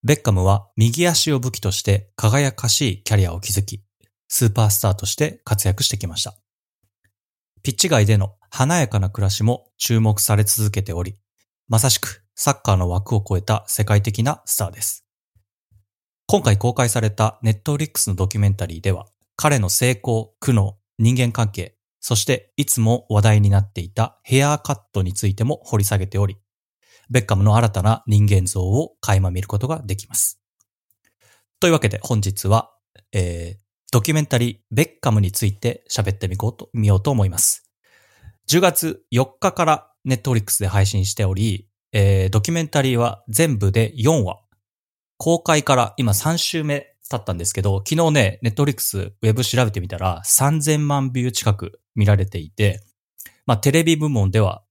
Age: 30-49